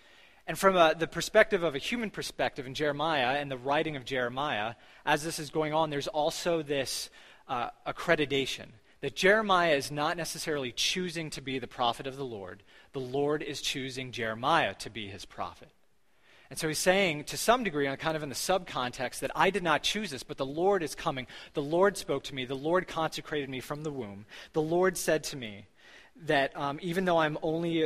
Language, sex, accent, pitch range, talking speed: English, male, American, 125-160 Hz, 205 wpm